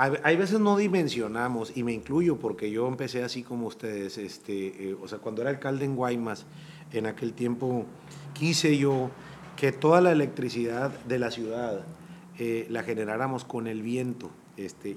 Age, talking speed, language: 40-59, 165 wpm, Spanish